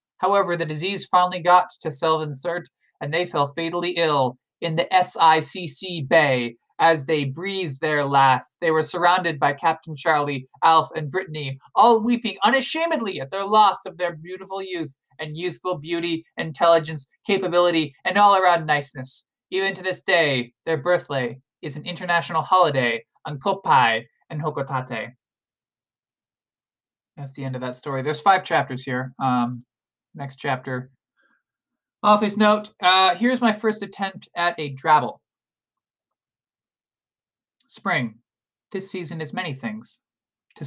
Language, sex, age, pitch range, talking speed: English, male, 20-39, 135-185 Hz, 135 wpm